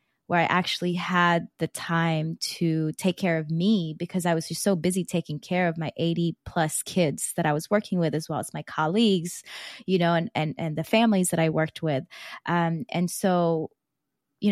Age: 20-39